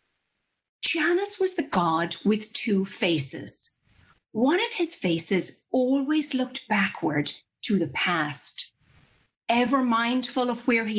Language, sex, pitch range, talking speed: English, female, 185-275 Hz, 120 wpm